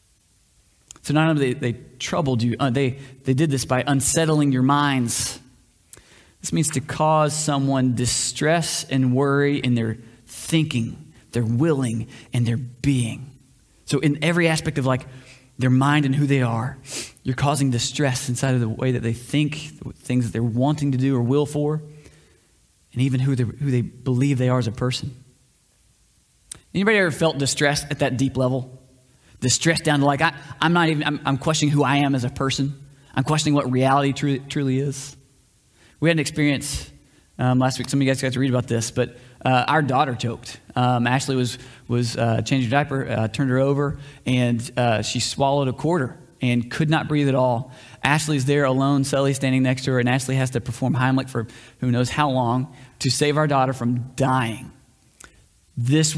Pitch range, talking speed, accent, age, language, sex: 125-145 Hz, 190 wpm, American, 20-39, English, male